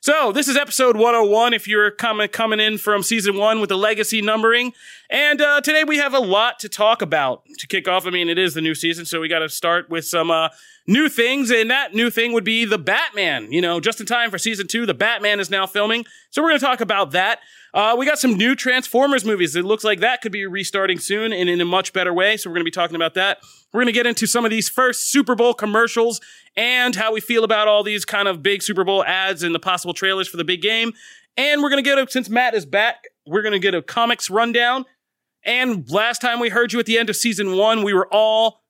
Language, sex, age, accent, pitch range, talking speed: English, male, 30-49, American, 190-240 Hz, 260 wpm